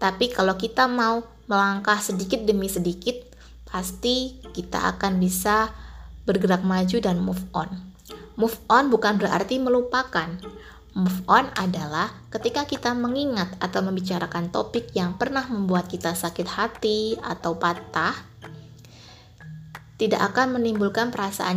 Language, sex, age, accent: Indonesian, female, 20-39, native